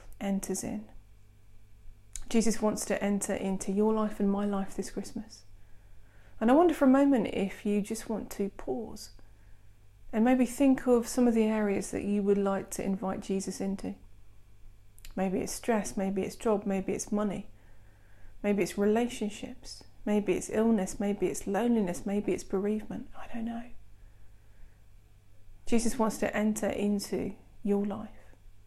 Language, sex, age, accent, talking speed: English, female, 40-59, British, 155 wpm